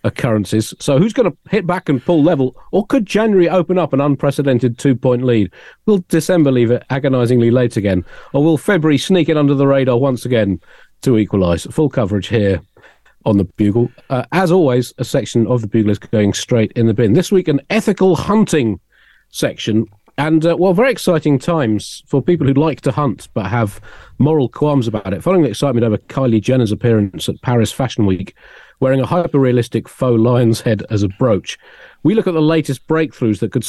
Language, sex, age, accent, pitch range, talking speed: English, male, 40-59, British, 110-155 Hz, 200 wpm